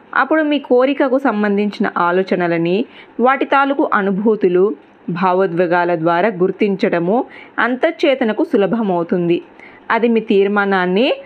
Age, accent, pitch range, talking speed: 20-39, native, 185-245 Hz, 85 wpm